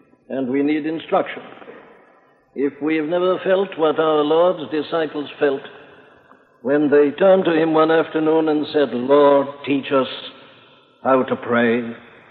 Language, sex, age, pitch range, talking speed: English, male, 60-79, 130-160 Hz, 140 wpm